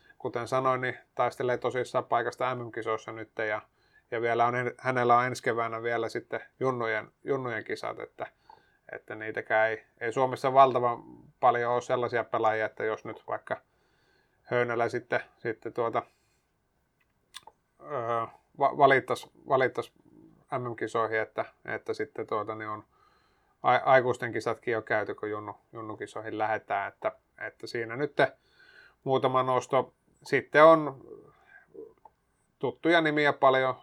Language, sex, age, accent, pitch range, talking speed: Finnish, male, 30-49, native, 115-130 Hz, 125 wpm